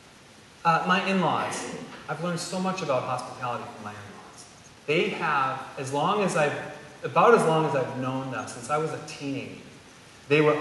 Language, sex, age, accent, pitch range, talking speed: English, male, 30-49, American, 135-170 Hz, 180 wpm